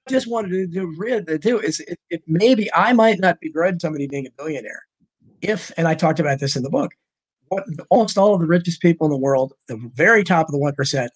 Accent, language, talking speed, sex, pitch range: American, English, 240 wpm, male, 155-200 Hz